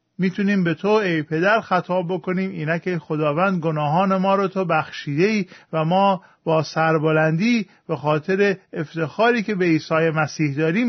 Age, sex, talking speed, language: 50-69, male, 150 wpm, Persian